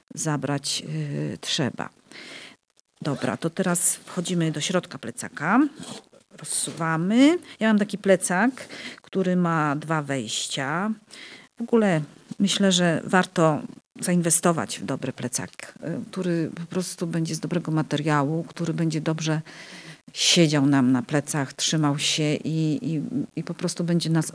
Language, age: Polish, 40-59